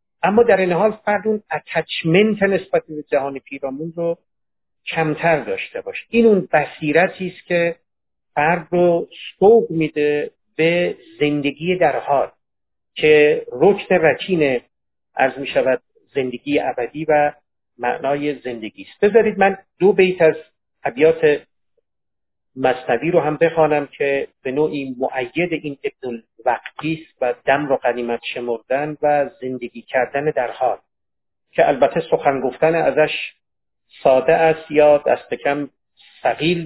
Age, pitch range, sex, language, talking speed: 50-69, 140-175 Hz, male, Persian, 125 wpm